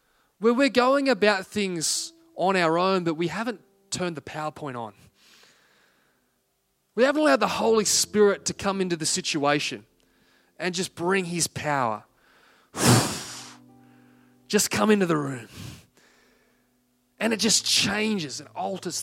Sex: male